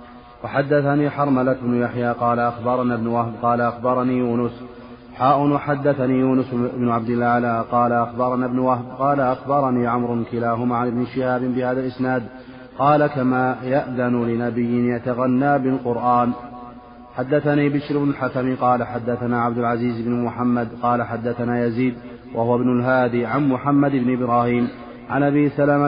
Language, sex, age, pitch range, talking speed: Arabic, male, 30-49, 120-130 Hz, 135 wpm